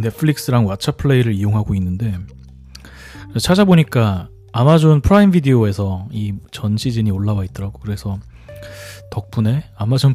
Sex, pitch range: male, 100-135 Hz